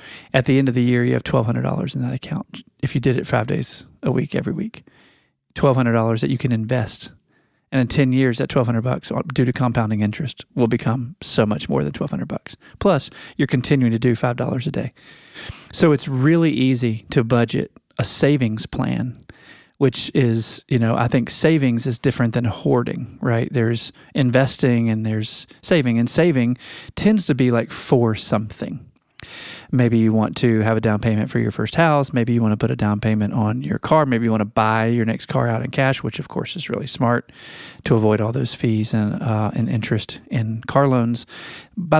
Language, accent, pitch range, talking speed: English, American, 115-135 Hz, 200 wpm